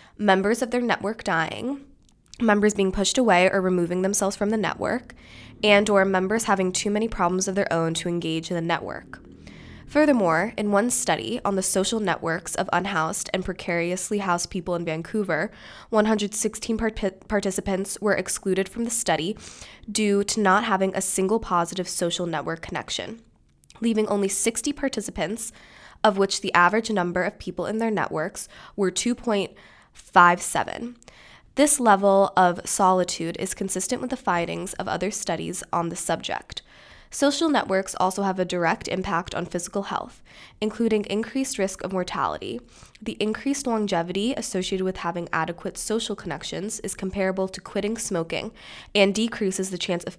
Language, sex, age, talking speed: English, female, 10-29, 155 wpm